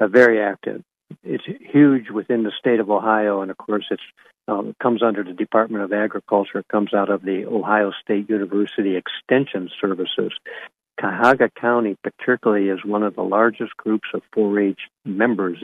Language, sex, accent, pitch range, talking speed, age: English, male, American, 95-110 Hz, 160 wpm, 60-79